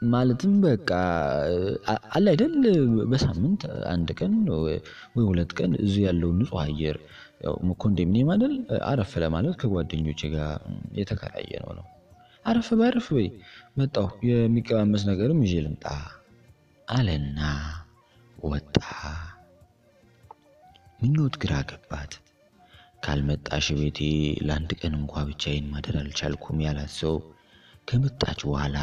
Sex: male